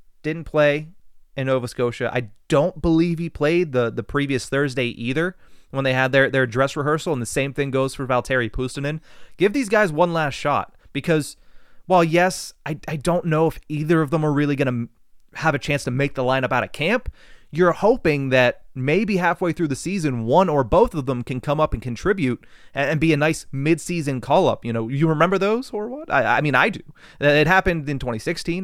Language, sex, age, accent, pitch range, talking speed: English, male, 30-49, American, 130-160 Hz, 215 wpm